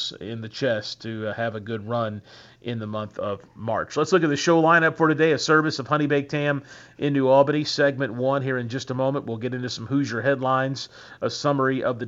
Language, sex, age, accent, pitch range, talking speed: English, male, 40-59, American, 120-145 Hz, 230 wpm